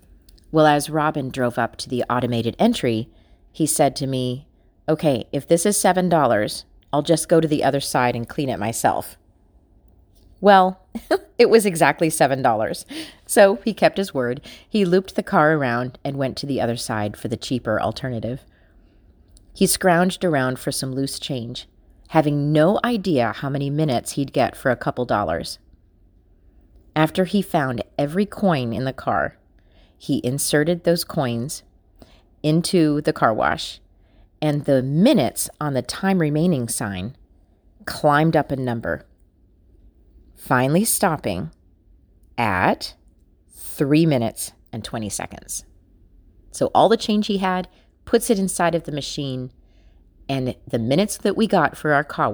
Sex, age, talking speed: female, 30-49, 150 wpm